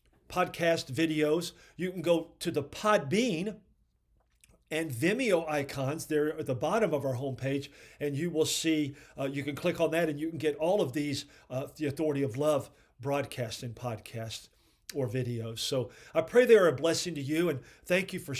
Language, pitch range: English, 130-165 Hz